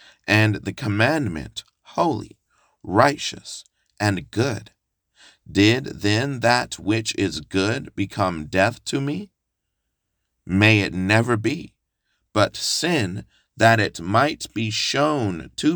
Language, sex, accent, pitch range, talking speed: English, male, American, 100-130 Hz, 110 wpm